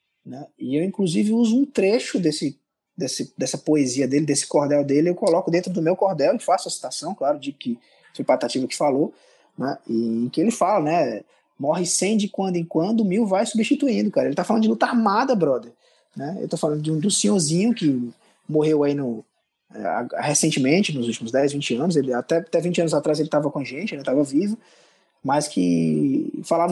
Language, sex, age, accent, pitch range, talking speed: Portuguese, male, 20-39, Brazilian, 150-215 Hz, 205 wpm